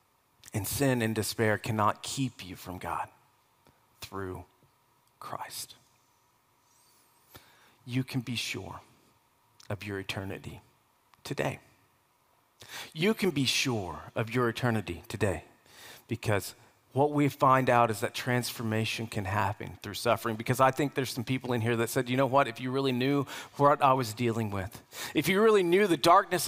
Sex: male